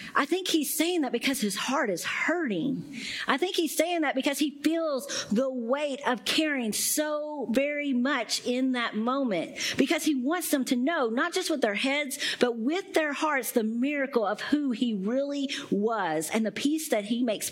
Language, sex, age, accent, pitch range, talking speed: English, female, 50-69, American, 175-250 Hz, 190 wpm